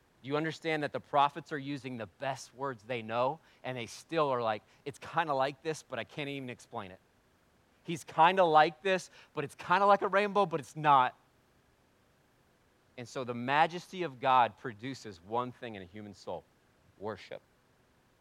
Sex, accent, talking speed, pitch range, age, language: male, American, 190 wpm, 115-150 Hz, 40-59, English